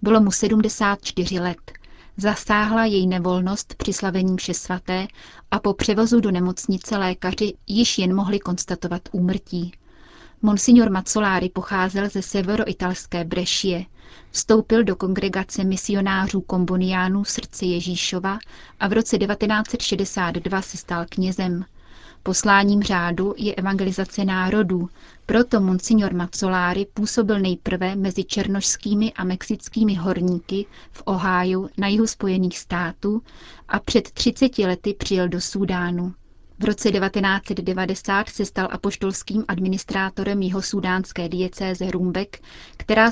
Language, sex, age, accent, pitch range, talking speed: Czech, female, 30-49, native, 185-210 Hz, 115 wpm